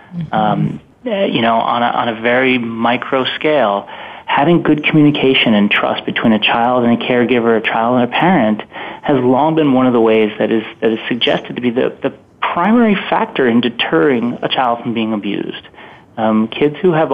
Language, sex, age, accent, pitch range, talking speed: English, male, 30-49, American, 115-140 Hz, 195 wpm